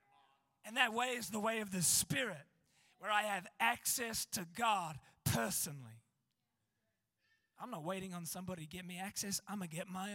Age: 20-39